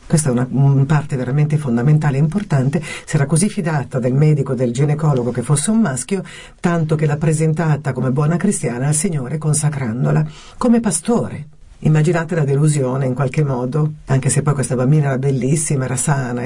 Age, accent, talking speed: 50-69, native, 170 wpm